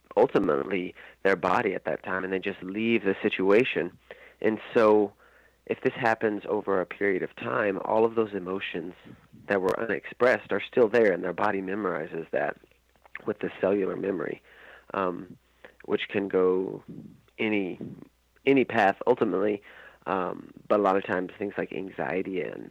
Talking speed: 155 wpm